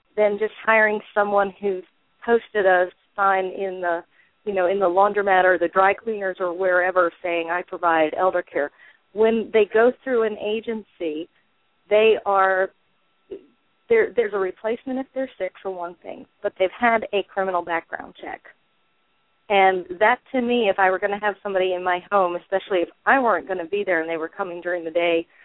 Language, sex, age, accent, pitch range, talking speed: English, female, 40-59, American, 180-225 Hz, 185 wpm